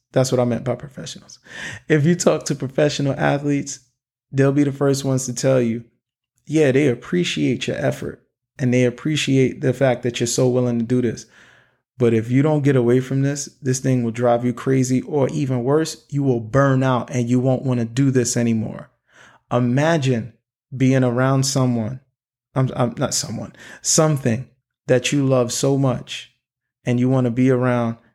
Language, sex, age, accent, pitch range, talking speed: English, male, 20-39, American, 120-135 Hz, 185 wpm